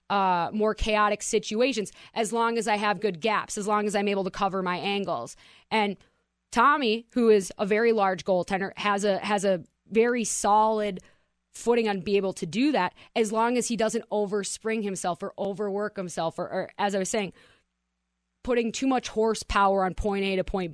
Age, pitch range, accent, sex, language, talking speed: 20-39, 190-230 Hz, American, female, English, 190 wpm